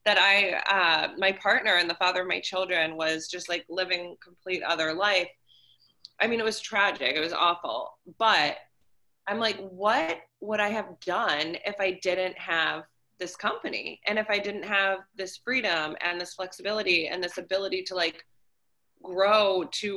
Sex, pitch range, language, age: female, 165-200 Hz, English, 20-39